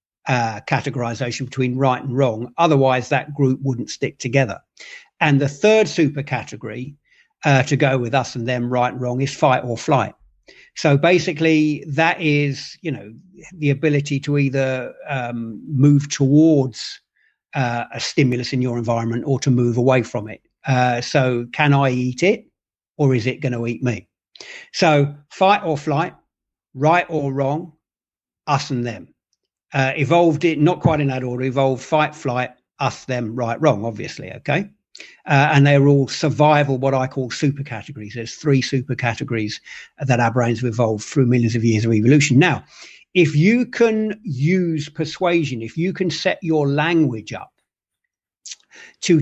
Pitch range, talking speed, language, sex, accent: 125-150 Hz, 165 wpm, English, male, British